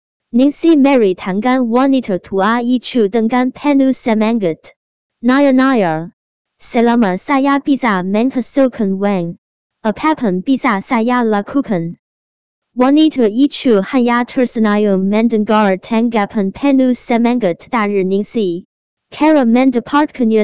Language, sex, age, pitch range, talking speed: Indonesian, male, 20-39, 200-250 Hz, 95 wpm